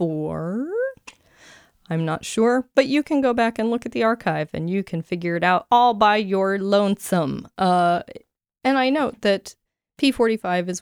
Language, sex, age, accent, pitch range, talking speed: English, female, 20-39, American, 170-235 Hz, 165 wpm